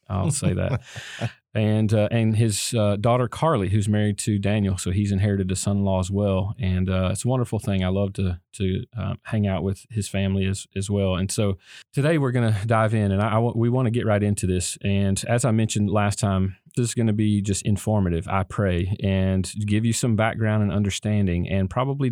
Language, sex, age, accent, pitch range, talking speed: English, male, 40-59, American, 95-110 Hz, 220 wpm